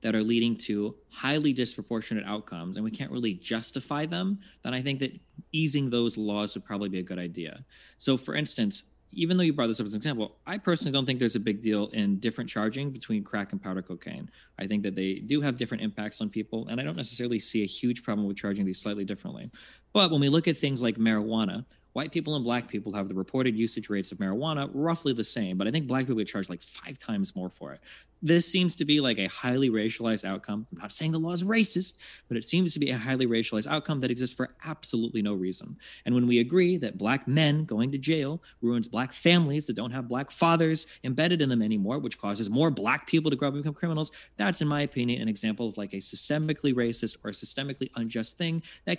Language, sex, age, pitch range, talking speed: English, male, 20-39, 105-150 Hz, 235 wpm